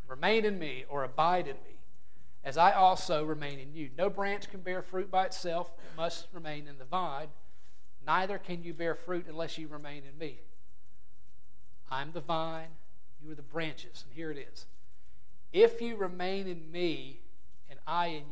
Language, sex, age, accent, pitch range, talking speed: English, male, 40-59, American, 135-180 Hz, 180 wpm